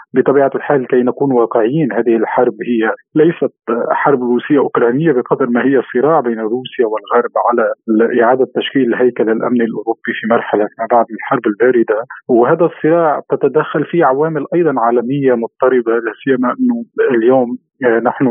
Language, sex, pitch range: Arabic, male, 120-150 Hz